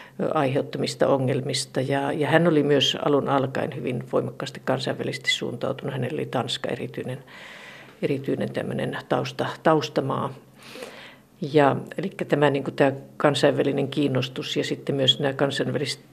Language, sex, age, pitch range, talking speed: Finnish, female, 50-69, 140-160 Hz, 120 wpm